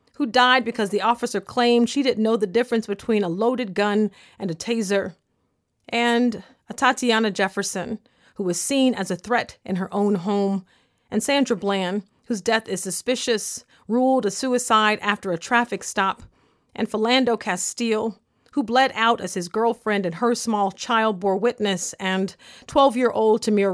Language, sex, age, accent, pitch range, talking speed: English, female, 40-59, American, 200-240 Hz, 160 wpm